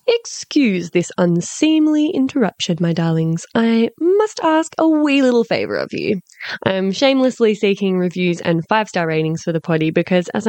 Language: English